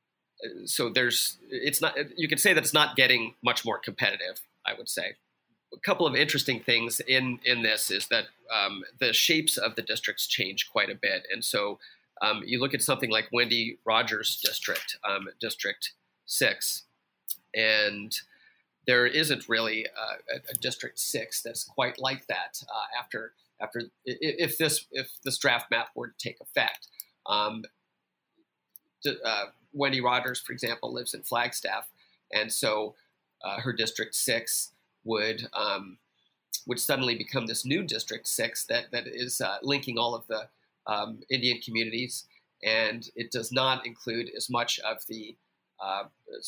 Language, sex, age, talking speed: English, male, 30-49, 160 wpm